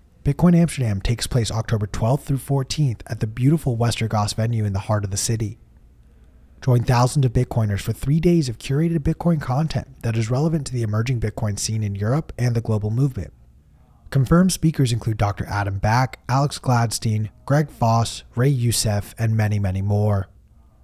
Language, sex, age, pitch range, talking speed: English, male, 30-49, 105-135 Hz, 175 wpm